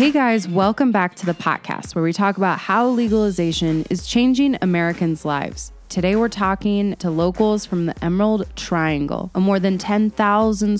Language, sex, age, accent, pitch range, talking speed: English, female, 20-39, American, 165-210 Hz, 165 wpm